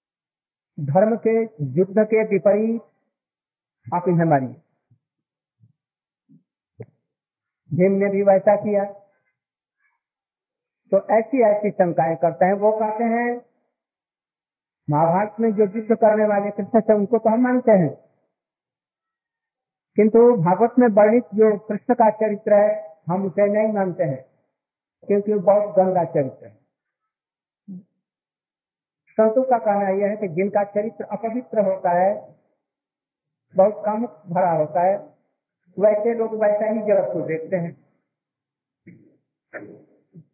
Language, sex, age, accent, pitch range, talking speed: Hindi, male, 50-69, native, 185-225 Hz, 110 wpm